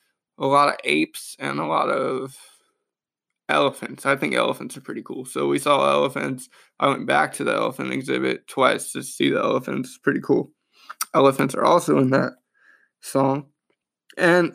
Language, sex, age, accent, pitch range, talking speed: English, male, 20-39, American, 145-175 Hz, 165 wpm